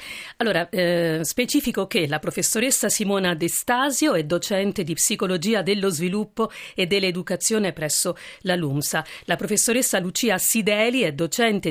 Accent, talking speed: native, 130 wpm